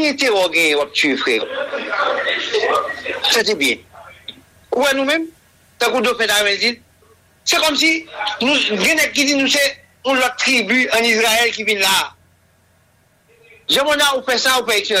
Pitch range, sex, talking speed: 210-295 Hz, male, 140 wpm